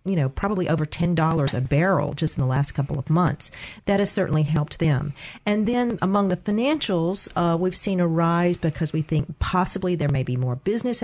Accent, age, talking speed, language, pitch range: American, 40-59, 205 wpm, English, 150-185 Hz